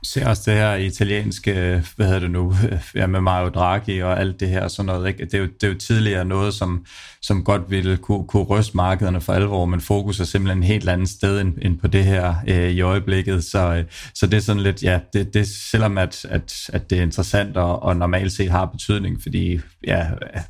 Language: Danish